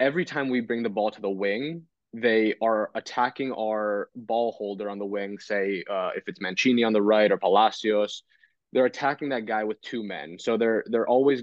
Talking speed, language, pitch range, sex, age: 205 wpm, English, 105-125 Hz, male, 20-39